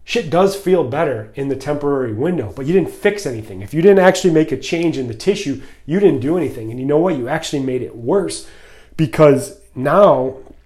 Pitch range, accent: 125-155 Hz, American